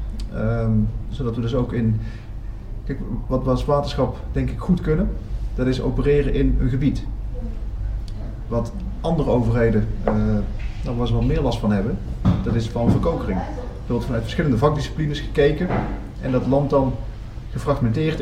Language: Dutch